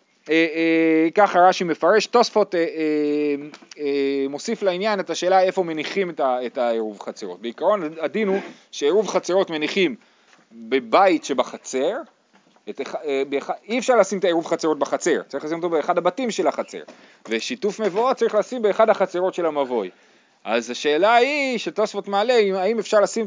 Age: 30-49